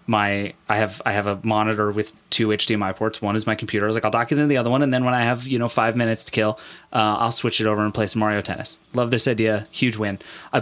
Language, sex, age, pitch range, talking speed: English, male, 20-39, 110-140 Hz, 295 wpm